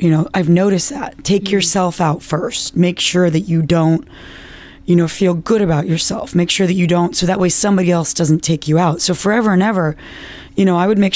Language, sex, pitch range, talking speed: English, female, 160-195 Hz, 230 wpm